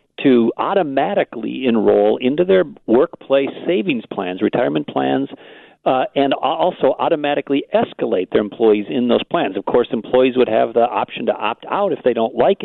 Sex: male